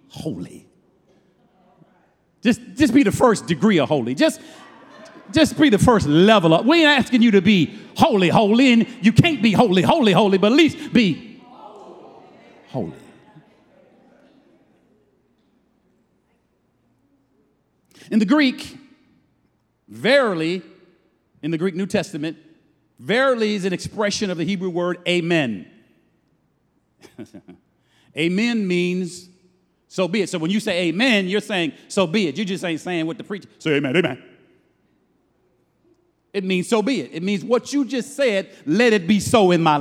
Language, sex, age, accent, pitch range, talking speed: English, male, 50-69, American, 180-245 Hz, 145 wpm